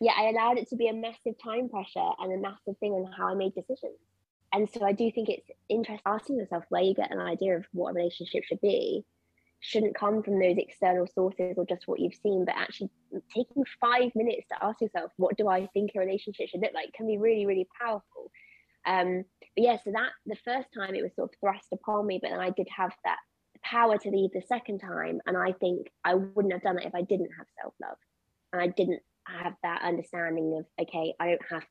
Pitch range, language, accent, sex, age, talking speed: 180-225 Hz, English, British, female, 20-39, 235 wpm